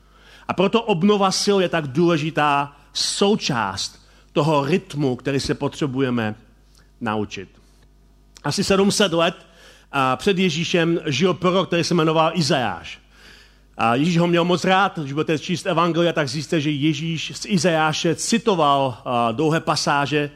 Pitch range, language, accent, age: 140-180 Hz, Czech, native, 40-59